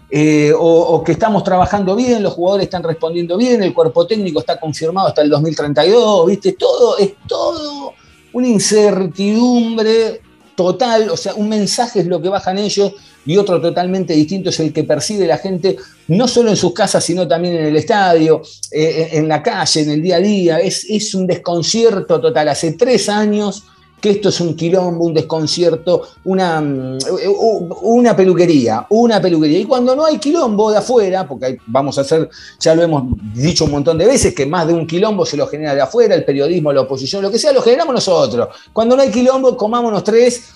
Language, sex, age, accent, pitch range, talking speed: Spanish, male, 40-59, Argentinian, 160-210 Hz, 195 wpm